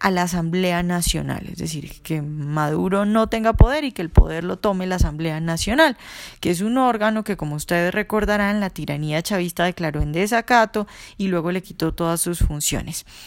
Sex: female